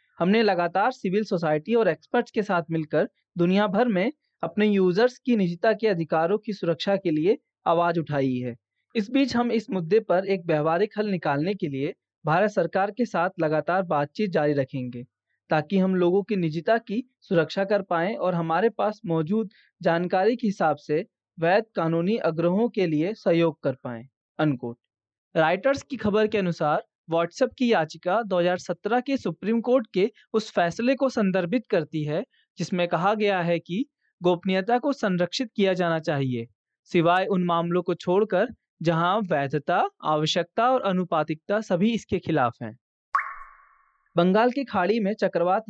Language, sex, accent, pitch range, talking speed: Hindi, male, native, 165-215 Hz, 110 wpm